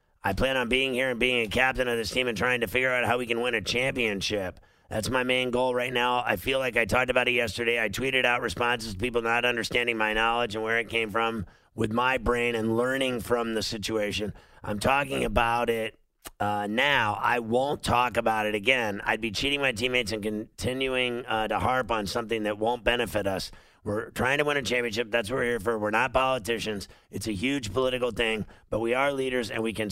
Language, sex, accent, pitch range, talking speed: English, male, American, 110-125 Hz, 230 wpm